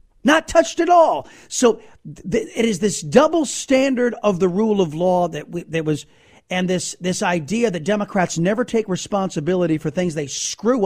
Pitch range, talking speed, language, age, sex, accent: 175-225 Hz, 190 wpm, English, 40-59, male, American